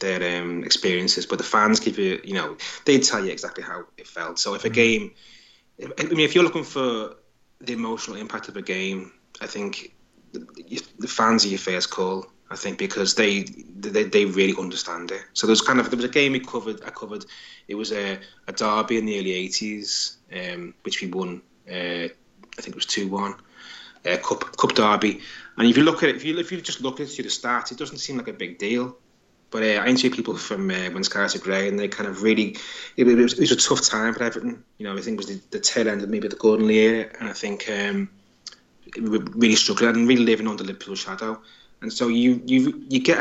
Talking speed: 230 wpm